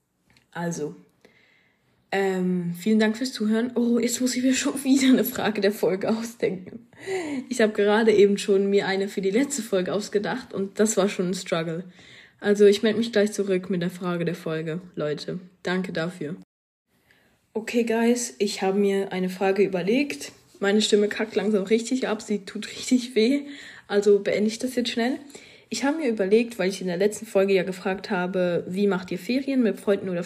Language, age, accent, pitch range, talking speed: German, 20-39, German, 195-235 Hz, 185 wpm